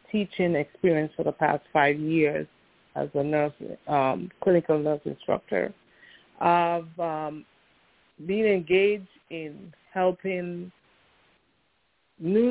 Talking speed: 100 wpm